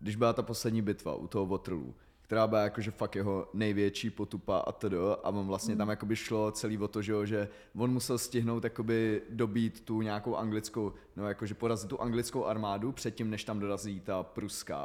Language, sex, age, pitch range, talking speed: Czech, male, 20-39, 105-120 Hz, 180 wpm